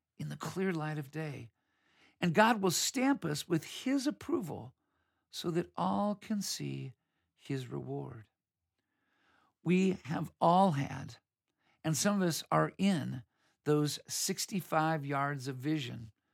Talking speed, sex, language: 130 wpm, male, English